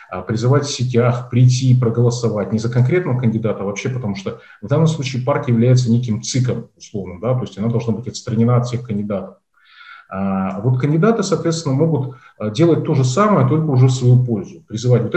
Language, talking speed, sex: Russian, 185 wpm, male